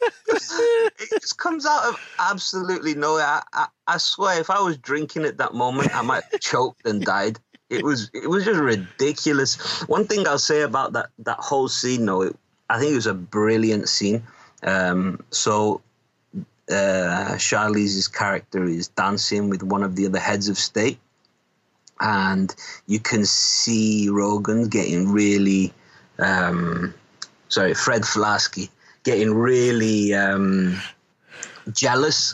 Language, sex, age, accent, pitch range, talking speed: English, male, 30-49, British, 100-130 Hz, 145 wpm